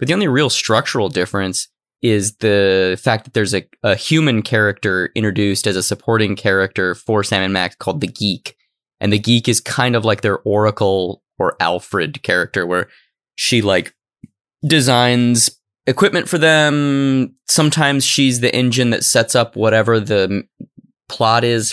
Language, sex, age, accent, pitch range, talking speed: English, male, 20-39, American, 105-140 Hz, 155 wpm